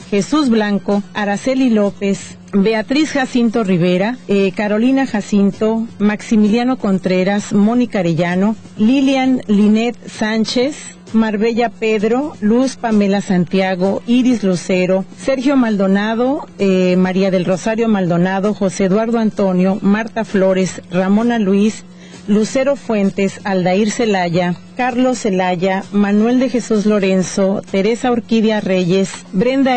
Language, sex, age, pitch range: English, female, 40-59, 195-240 Hz